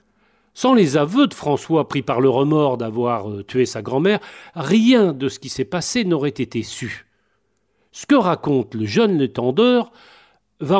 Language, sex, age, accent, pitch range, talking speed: French, male, 40-59, French, 135-205 Hz, 165 wpm